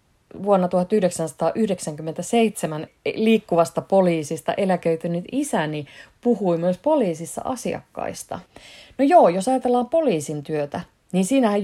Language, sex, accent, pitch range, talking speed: Finnish, female, native, 160-200 Hz, 95 wpm